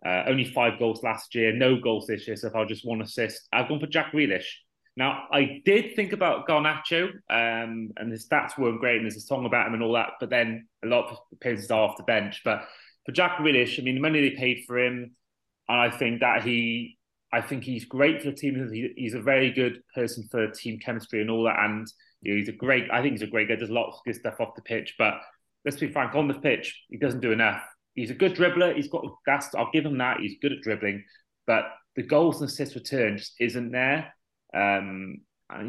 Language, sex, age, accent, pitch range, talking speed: English, male, 30-49, British, 110-140 Hz, 245 wpm